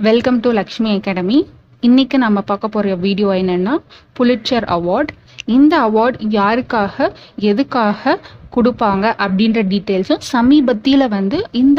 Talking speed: 75 wpm